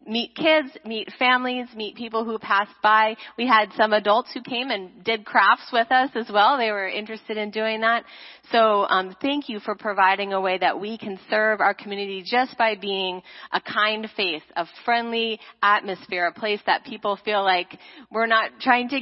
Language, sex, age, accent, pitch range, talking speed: English, female, 30-49, American, 180-225 Hz, 190 wpm